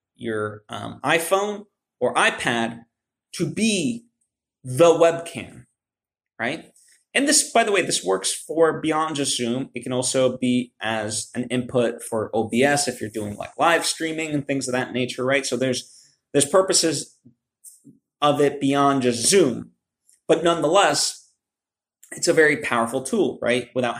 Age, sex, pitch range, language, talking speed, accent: 30-49, male, 115-145 Hz, English, 150 wpm, American